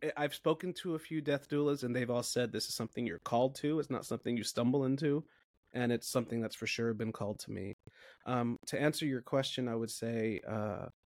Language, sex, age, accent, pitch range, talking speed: English, male, 30-49, American, 115-150 Hz, 220 wpm